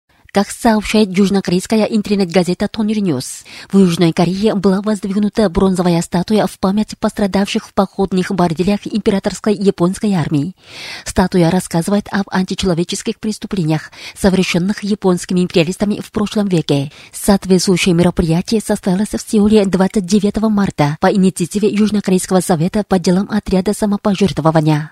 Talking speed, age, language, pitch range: 115 wpm, 30-49, Russian, 180-210 Hz